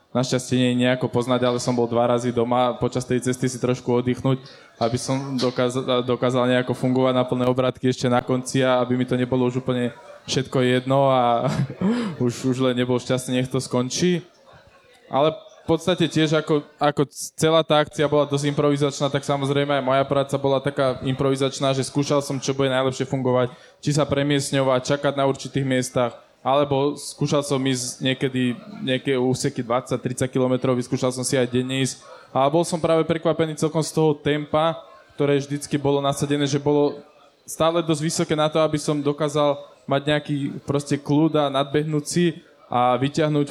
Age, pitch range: 20-39, 130-150 Hz